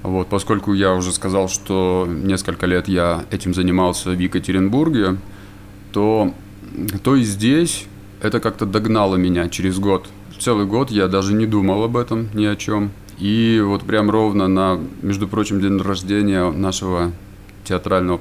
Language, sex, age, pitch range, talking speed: Russian, male, 20-39, 95-105 Hz, 150 wpm